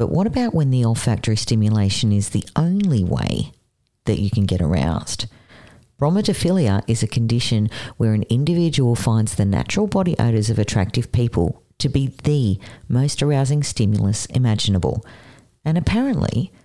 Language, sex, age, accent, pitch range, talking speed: English, female, 40-59, Australian, 110-145 Hz, 145 wpm